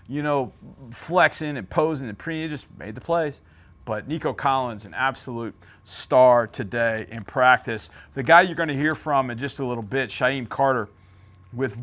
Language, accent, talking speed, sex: English, American, 180 wpm, male